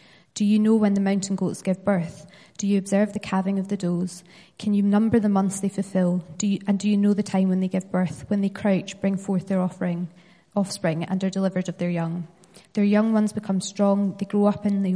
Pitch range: 185-205 Hz